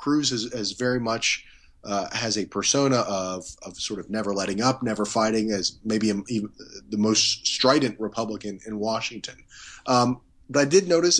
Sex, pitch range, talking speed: male, 100-125 Hz, 180 wpm